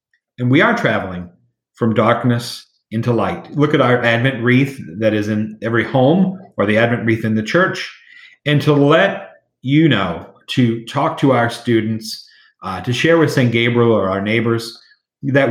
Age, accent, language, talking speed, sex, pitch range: 40-59, American, English, 175 wpm, male, 110-135 Hz